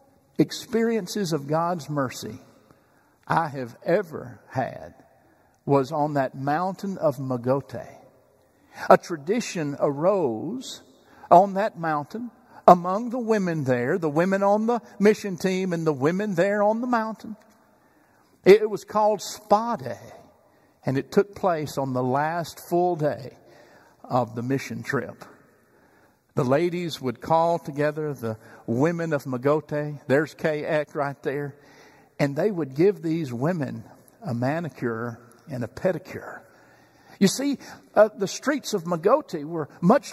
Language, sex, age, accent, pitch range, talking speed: English, male, 50-69, American, 145-215 Hz, 135 wpm